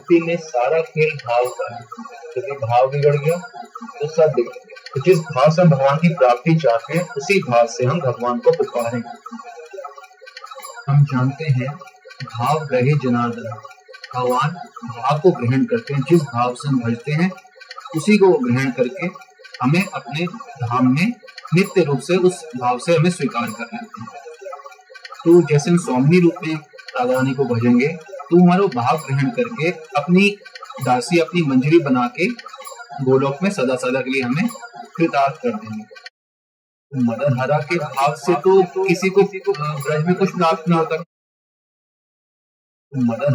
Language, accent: Hindi, native